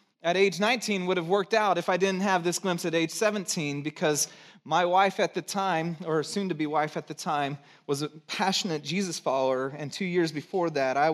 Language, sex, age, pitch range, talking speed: English, male, 30-49, 155-235 Hz, 215 wpm